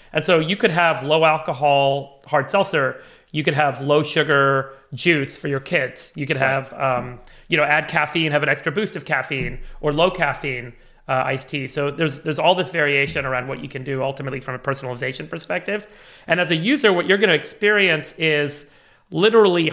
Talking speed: 200 wpm